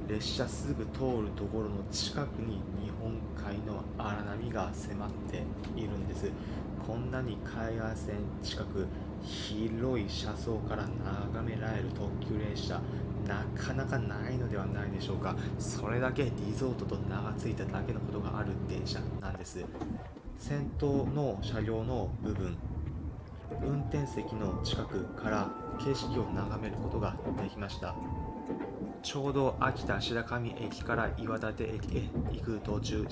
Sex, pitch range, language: male, 100-120 Hz, Japanese